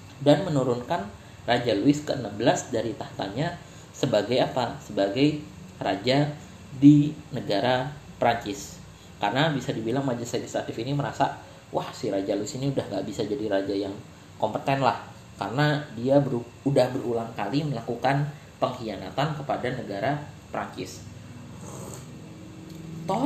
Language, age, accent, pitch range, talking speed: Indonesian, 20-39, native, 115-145 Hz, 120 wpm